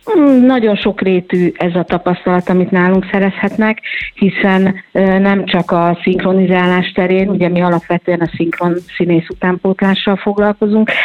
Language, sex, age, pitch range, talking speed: Hungarian, female, 50-69, 170-195 Hz, 120 wpm